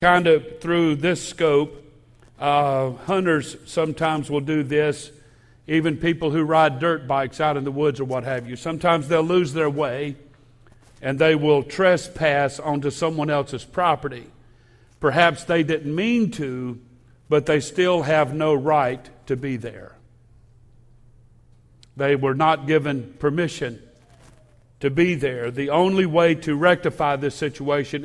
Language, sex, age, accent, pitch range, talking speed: English, male, 50-69, American, 130-160 Hz, 145 wpm